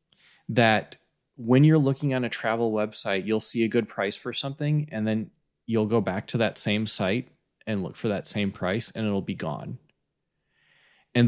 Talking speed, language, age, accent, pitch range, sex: 185 wpm, English, 20-39, American, 105-125 Hz, male